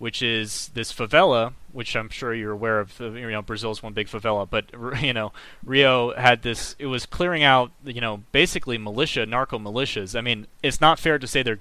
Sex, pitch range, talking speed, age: male, 110-130 Hz, 205 wpm, 30-49